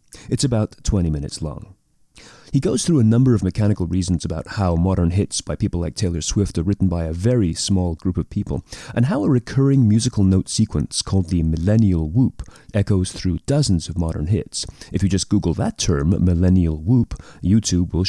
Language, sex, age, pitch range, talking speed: English, male, 30-49, 85-115 Hz, 190 wpm